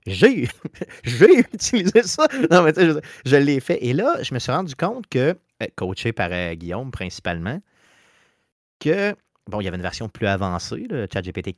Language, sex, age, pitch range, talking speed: French, male, 30-49, 100-130 Hz, 175 wpm